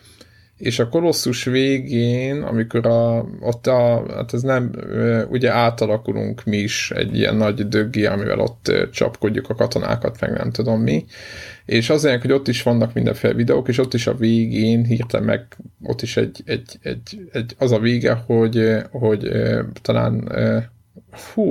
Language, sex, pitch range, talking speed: Hungarian, male, 110-125 Hz, 160 wpm